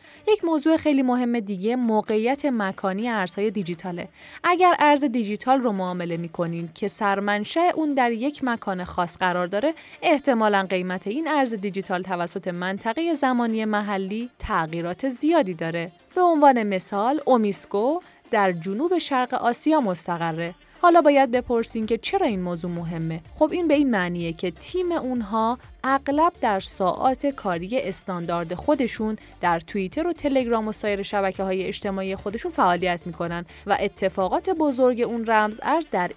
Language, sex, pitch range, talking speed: Persian, female, 185-275 Hz, 145 wpm